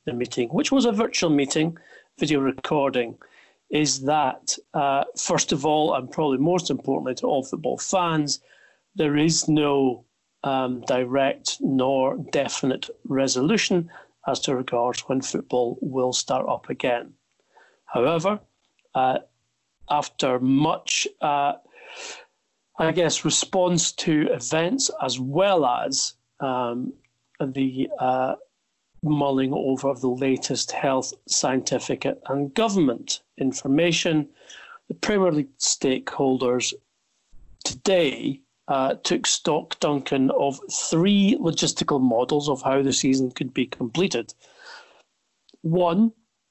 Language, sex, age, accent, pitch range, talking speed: English, male, 40-59, British, 135-165 Hz, 110 wpm